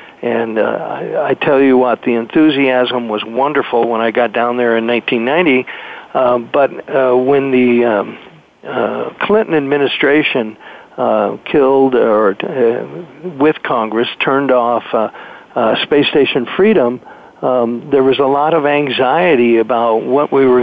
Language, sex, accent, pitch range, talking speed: English, male, American, 120-145 Hz, 150 wpm